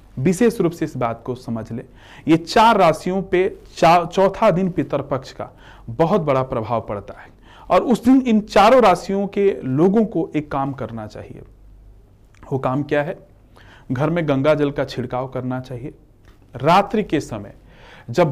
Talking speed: 165 wpm